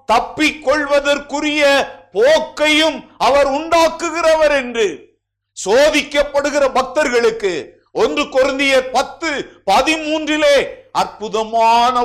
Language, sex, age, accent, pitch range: Tamil, male, 50-69, native, 235-345 Hz